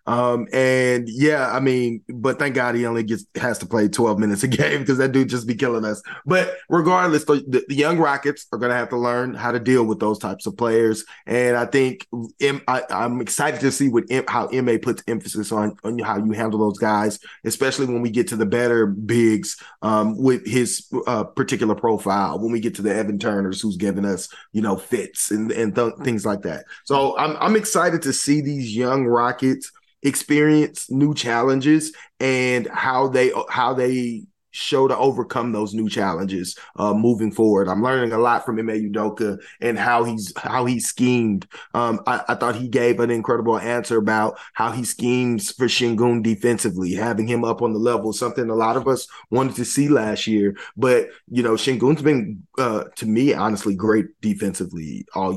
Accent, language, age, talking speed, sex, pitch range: American, English, 20-39, 195 wpm, male, 110-130 Hz